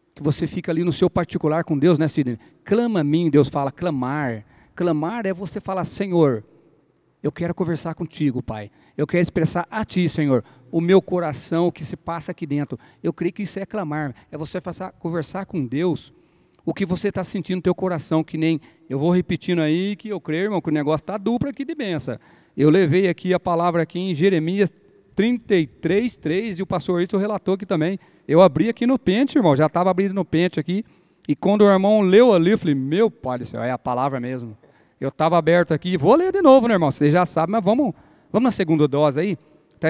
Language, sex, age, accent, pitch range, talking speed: Portuguese, male, 40-59, Brazilian, 150-190 Hz, 220 wpm